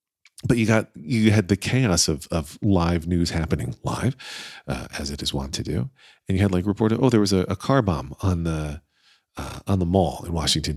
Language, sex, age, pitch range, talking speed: English, male, 40-59, 85-110 Hz, 225 wpm